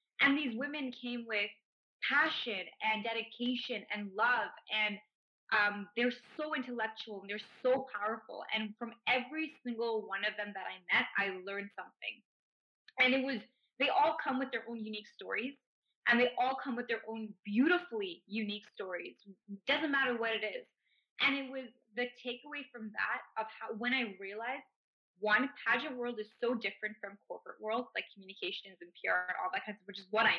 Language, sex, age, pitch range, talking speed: English, female, 20-39, 210-255 Hz, 180 wpm